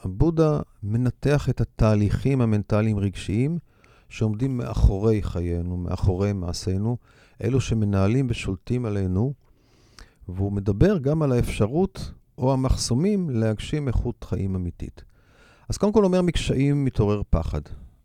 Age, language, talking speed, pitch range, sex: 40-59, Hebrew, 105 wpm, 95-125 Hz, male